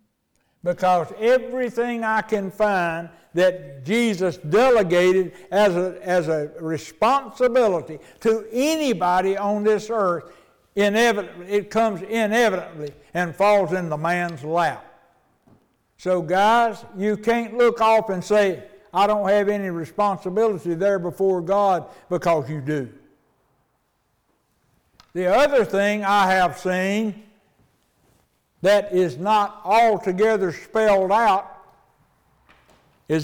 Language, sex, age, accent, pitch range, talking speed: English, male, 60-79, American, 170-210 Hz, 110 wpm